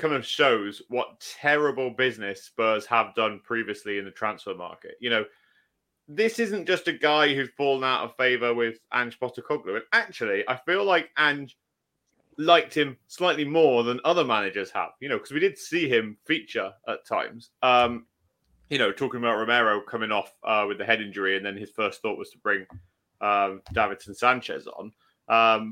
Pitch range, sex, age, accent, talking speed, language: 110-150 Hz, male, 30-49, British, 185 wpm, English